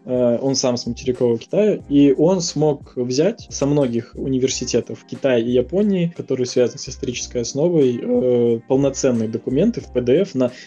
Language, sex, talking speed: Russian, male, 140 wpm